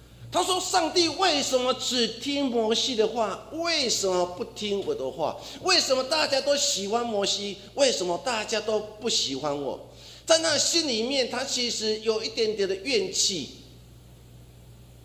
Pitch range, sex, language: 190-280 Hz, male, Chinese